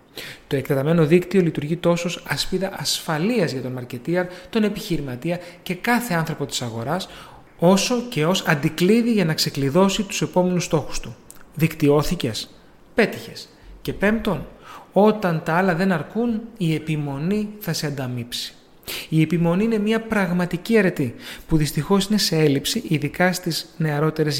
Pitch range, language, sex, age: 150-190 Hz, Greek, male, 30-49